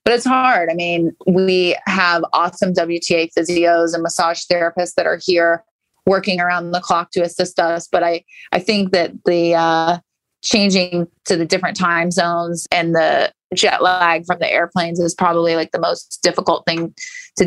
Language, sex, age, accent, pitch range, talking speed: English, female, 30-49, American, 170-190 Hz, 175 wpm